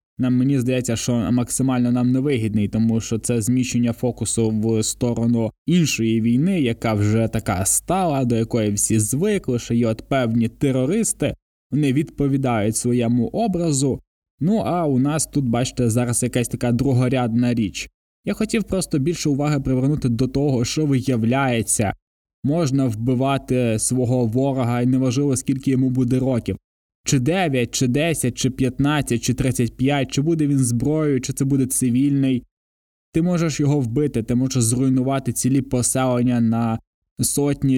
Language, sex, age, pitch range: Ukrainian, male, 20-39, 120-140 Hz